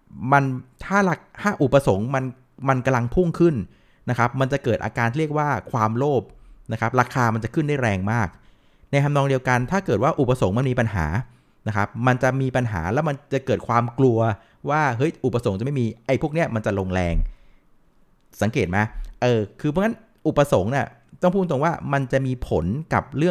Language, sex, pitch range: Thai, male, 105-135 Hz